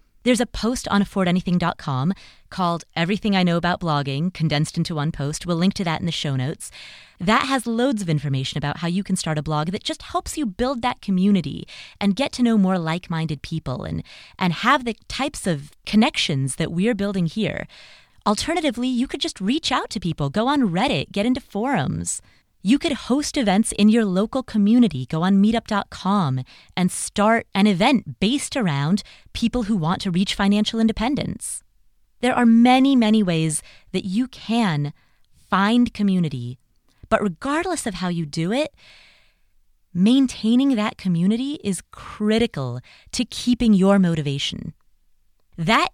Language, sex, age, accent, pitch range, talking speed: English, female, 30-49, American, 170-245 Hz, 165 wpm